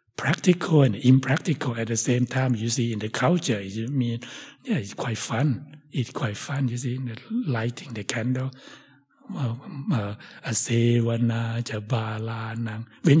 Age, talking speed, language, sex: 60-79, 125 wpm, English, male